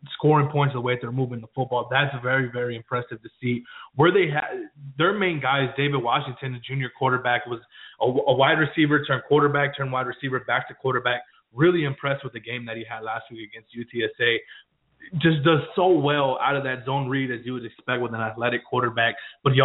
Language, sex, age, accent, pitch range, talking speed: English, male, 20-39, American, 120-140 Hz, 210 wpm